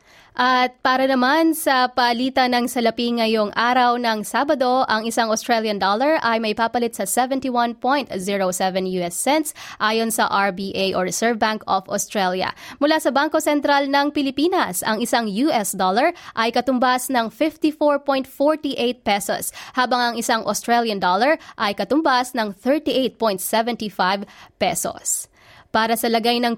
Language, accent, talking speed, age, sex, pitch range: English, Filipino, 135 wpm, 20-39, female, 220-290 Hz